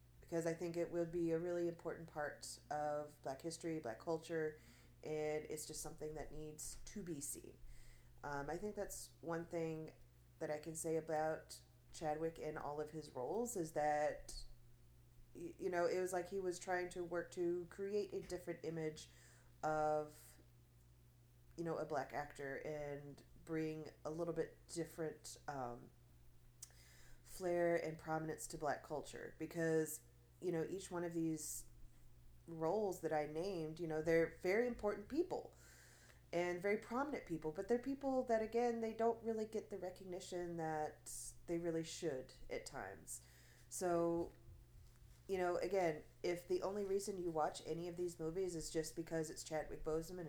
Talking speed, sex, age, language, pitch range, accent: 160 wpm, female, 30-49, English, 140-175 Hz, American